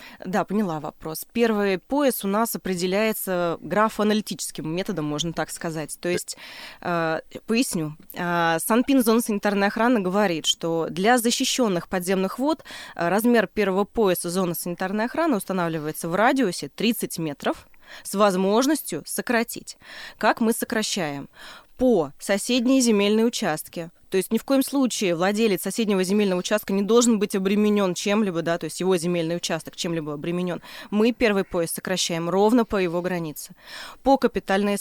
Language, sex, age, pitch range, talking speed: Russian, female, 20-39, 175-220 Hz, 135 wpm